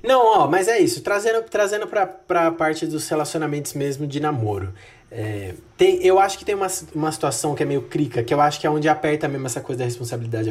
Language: Portuguese